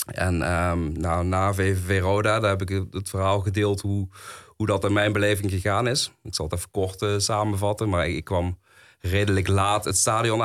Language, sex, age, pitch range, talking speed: Dutch, male, 30-49, 90-105 Hz, 200 wpm